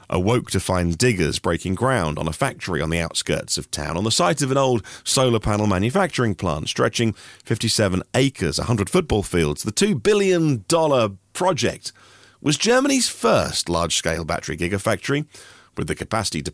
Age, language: 40-59, English